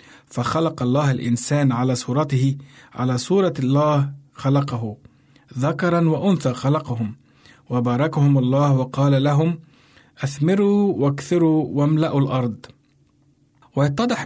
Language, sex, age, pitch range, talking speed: Arabic, male, 50-69, 130-160 Hz, 90 wpm